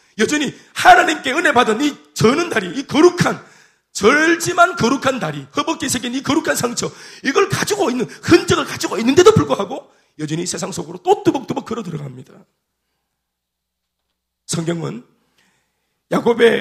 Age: 40-59